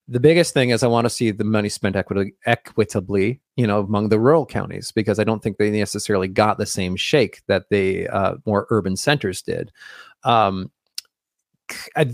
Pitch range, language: 105-130 Hz, English